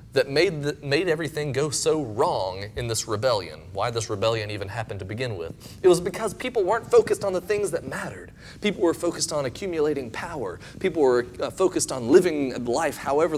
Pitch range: 110-155 Hz